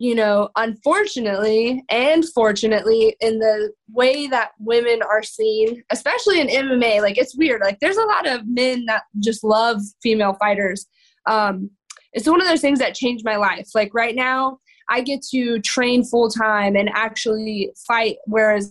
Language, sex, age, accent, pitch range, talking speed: English, female, 20-39, American, 210-260 Hz, 165 wpm